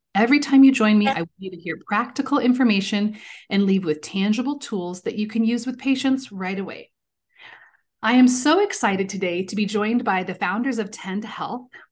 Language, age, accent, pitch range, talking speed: English, 30-49, American, 195-265 Hz, 195 wpm